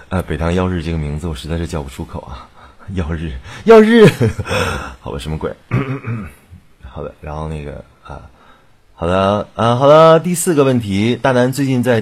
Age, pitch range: 20-39, 75-105 Hz